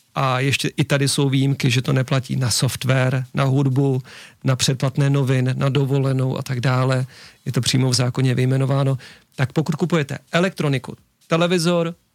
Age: 40-59